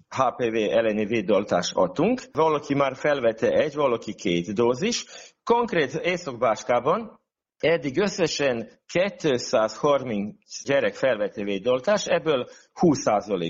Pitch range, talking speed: 115-175 Hz, 90 wpm